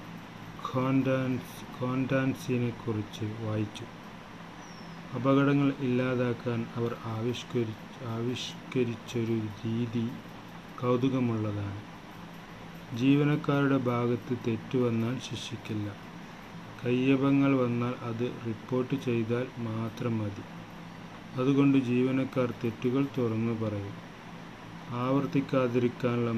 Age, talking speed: 30-49, 60 wpm